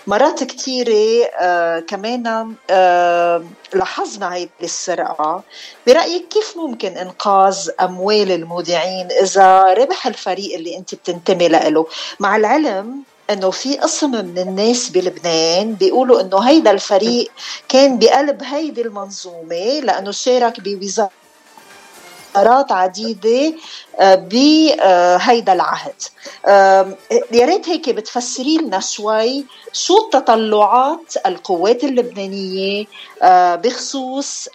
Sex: female